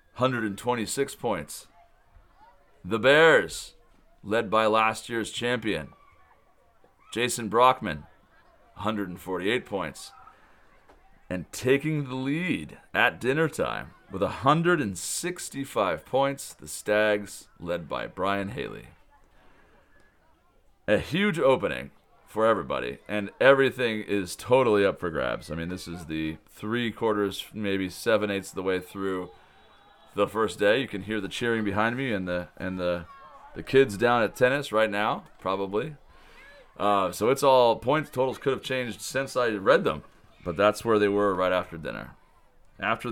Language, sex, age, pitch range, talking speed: English, male, 40-59, 95-125 Hz, 135 wpm